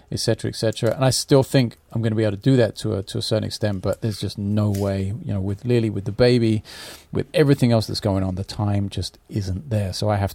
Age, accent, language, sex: 30-49, British, English, male